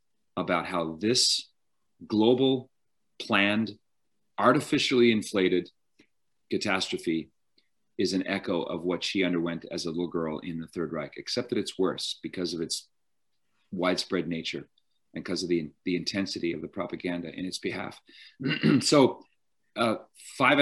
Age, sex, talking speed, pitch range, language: 40-59, male, 135 wpm, 85-120 Hz, English